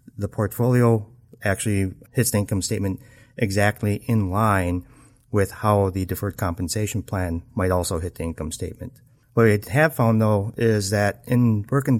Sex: male